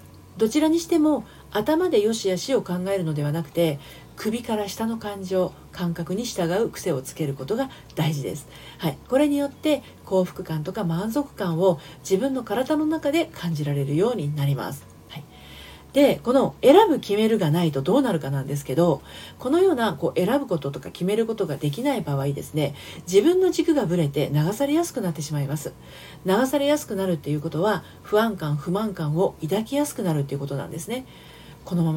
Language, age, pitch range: Japanese, 40-59, 160-260 Hz